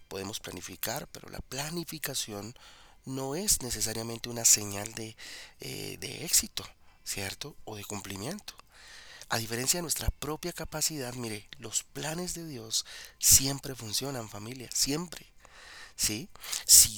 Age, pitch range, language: 40-59, 105-140 Hz, Spanish